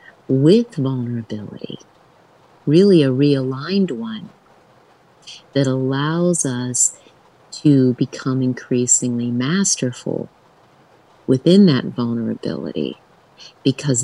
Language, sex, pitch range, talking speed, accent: English, female, 125-150 Hz, 75 wpm, American